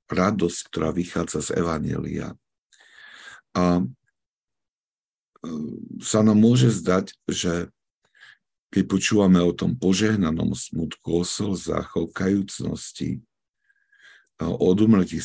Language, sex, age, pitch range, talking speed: Slovak, male, 50-69, 85-115 Hz, 85 wpm